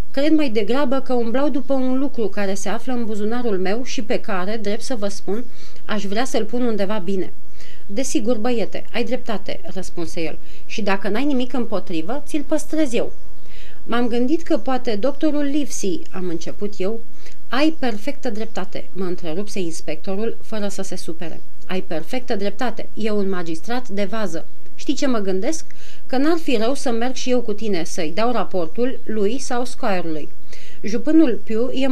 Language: Romanian